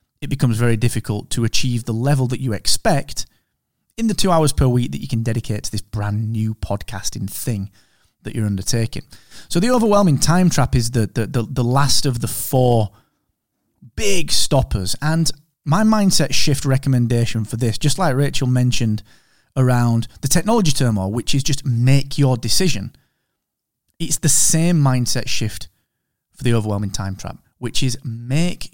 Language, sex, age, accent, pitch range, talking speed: English, male, 20-39, British, 110-145 Hz, 165 wpm